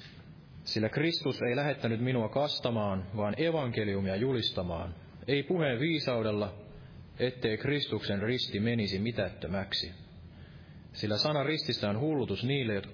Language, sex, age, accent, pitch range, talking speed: Finnish, male, 30-49, native, 100-130 Hz, 110 wpm